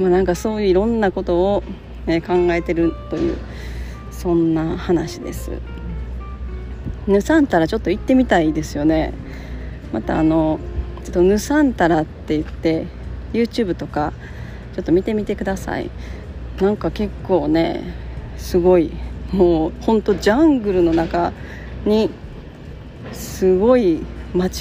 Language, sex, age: Japanese, female, 40-59